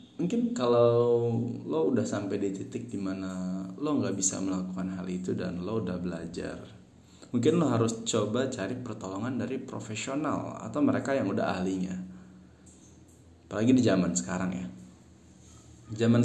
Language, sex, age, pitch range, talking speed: Indonesian, male, 20-39, 95-125 Hz, 135 wpm